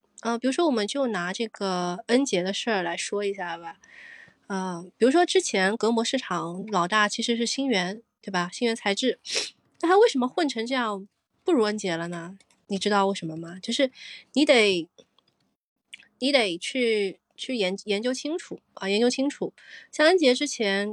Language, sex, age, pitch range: Chinese, female, 20-39, 185-250 Hz